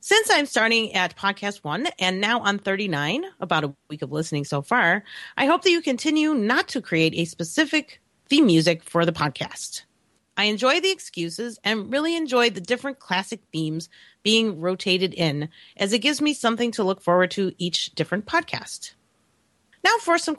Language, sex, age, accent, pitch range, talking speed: English, female, 30-49, American, 175-260 Hz, 180 wpm